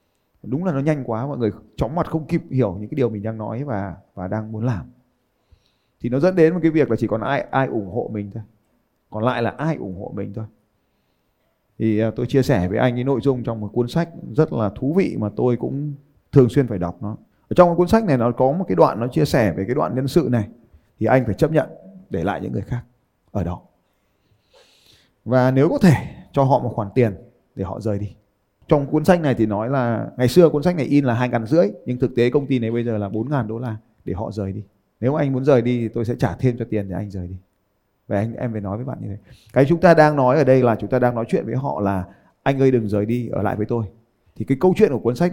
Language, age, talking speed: Vietnamese, 20-39, 275 wpm